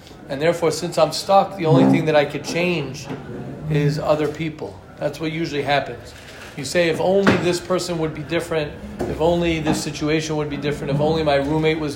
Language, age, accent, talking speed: English, 40-59, American, 200 wpm